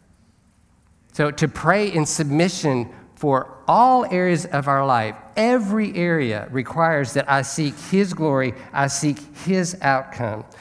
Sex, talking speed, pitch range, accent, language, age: male, 130 wpm, 125-175 Hz, American, English, 50-69